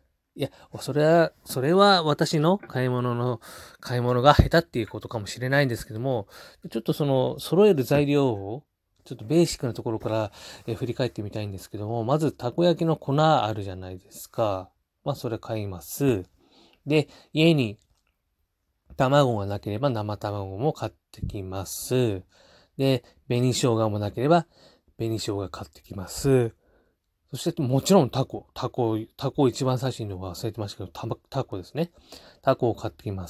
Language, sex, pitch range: Japanese, male, 105-150 Hz